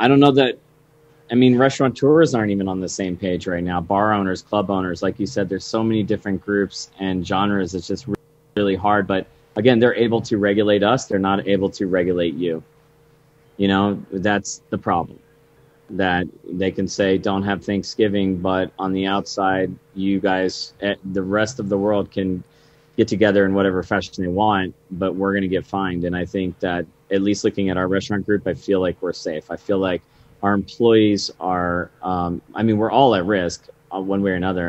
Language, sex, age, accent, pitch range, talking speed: English, male, 30-49, American, 95-105 Hz, 200 wpm